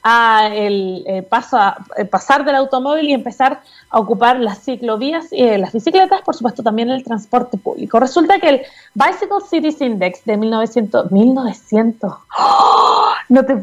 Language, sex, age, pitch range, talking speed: Spanish, female, 30-49, 225-295 Hz, 140 wpm